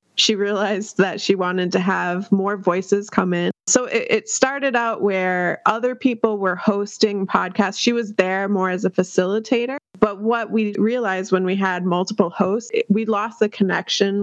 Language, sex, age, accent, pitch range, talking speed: English, female, 20-39, American, 195-235 Hz, 175 wpm